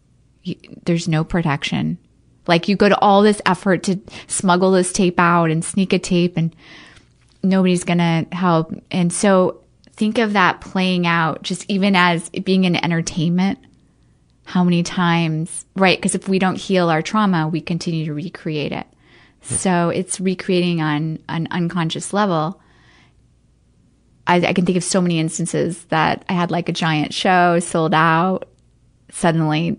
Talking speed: 155 wpm